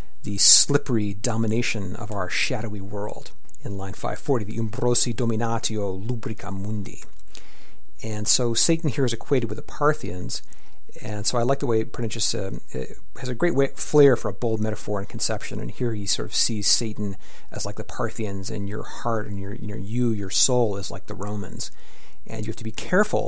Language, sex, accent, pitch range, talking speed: English, male, American, 105-120 Hz, 190 wpm